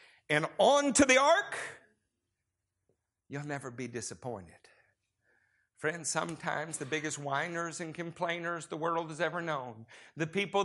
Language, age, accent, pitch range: English, 50-69, American, 135-195 Hz